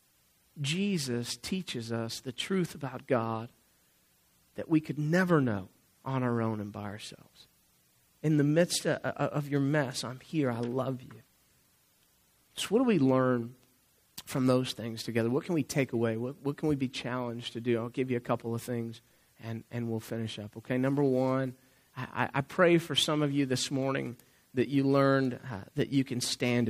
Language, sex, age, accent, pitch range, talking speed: English, male, 40-59, American, 120-145 Hz, 190 wpm